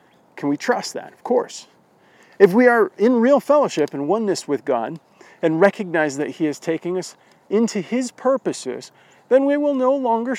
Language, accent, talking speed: English, American, 180 wpm